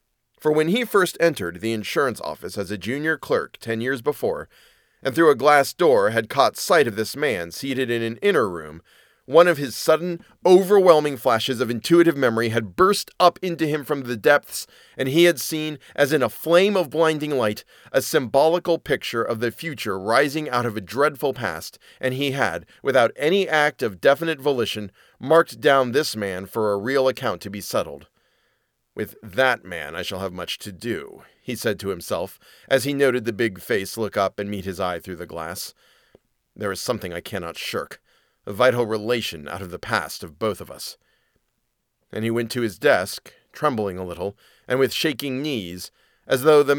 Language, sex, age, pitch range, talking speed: English, male, 40-59, 110-155 Hz, 195 wpm